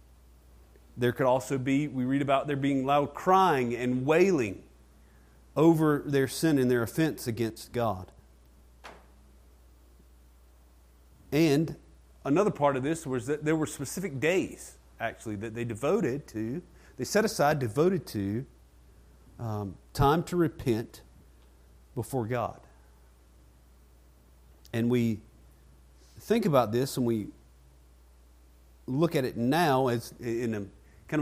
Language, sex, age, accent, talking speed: English, male, 40-59, American, 120 wpm